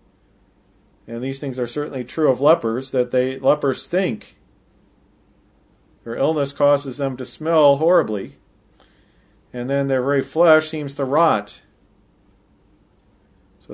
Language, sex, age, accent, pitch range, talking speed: English, male, 40-59, American, 100-140 Hz, 120 wpm